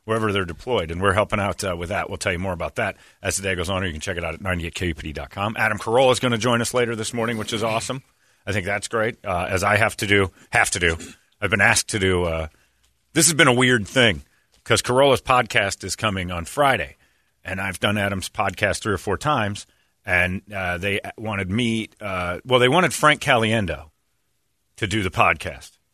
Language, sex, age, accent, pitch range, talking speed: English, male, 40-59, American, 95-115 Hz, 225 wpm